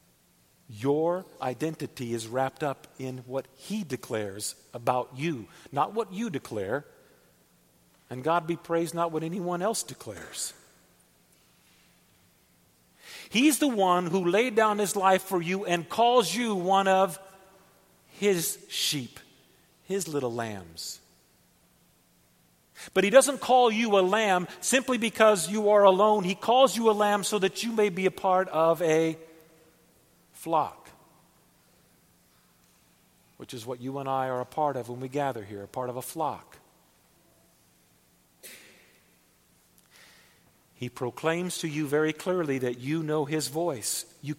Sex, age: male, 50-69